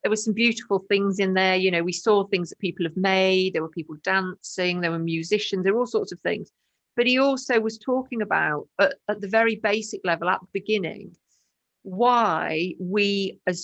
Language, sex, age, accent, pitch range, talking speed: English, female, 50-69, British, 170-210 Hz, 205 wpm